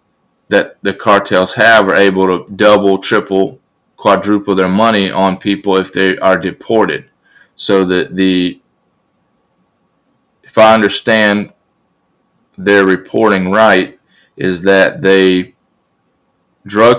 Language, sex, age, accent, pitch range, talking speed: English, male, 30-49, American, 95-105 Hz, 110 wpm